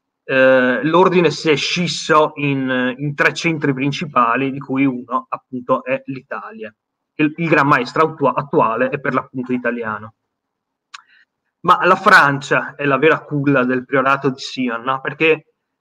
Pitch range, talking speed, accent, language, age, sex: 130-155 Hz, 135 wpm, native, Italian, 30-49, male